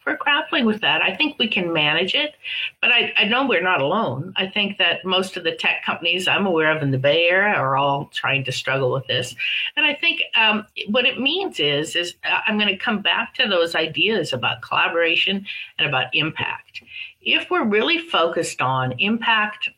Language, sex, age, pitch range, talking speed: English, female, 50-69, 145-205 Hz, 200 wpm